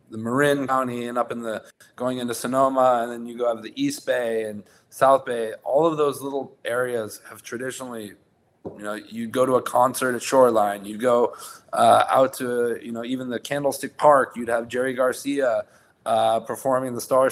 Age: 20-39